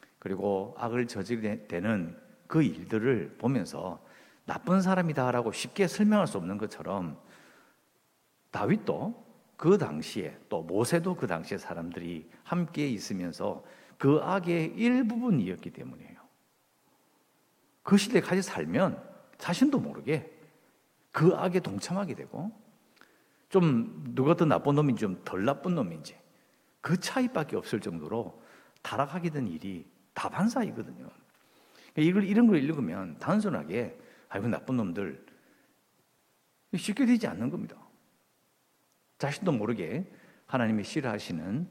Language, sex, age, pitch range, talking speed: English, male, 50-69, 120-195 Hz, 100 wpm